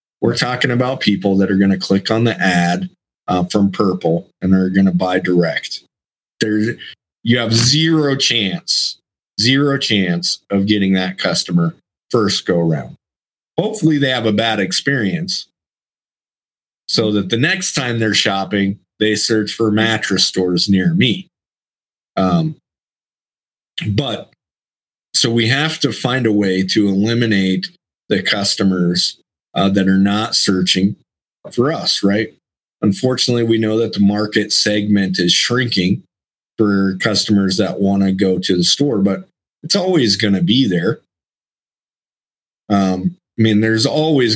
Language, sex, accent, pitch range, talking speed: English, male, American, 95-115 Hz, 145 wpm